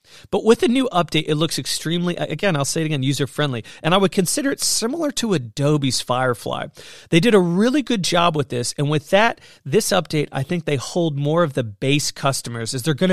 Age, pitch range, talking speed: 40-59, 130-180 Hz, 220 wpm